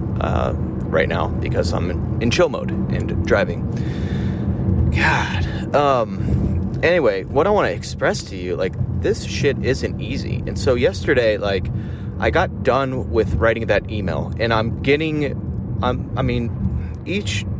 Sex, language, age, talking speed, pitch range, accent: male, English, 30-49, 145 wpm, 95-115 Hz, American